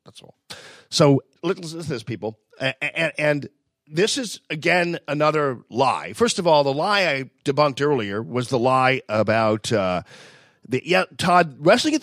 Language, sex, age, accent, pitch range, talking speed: English, male, 40-59, American, 120-170 Hz, 165 wpm